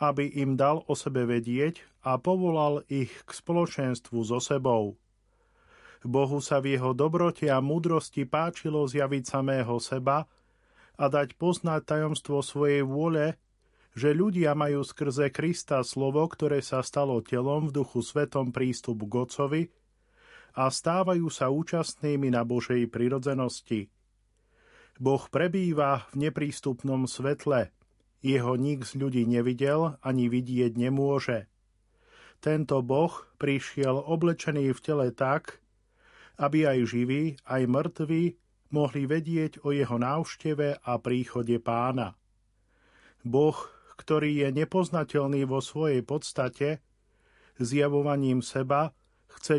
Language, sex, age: Slovak, male, 40-59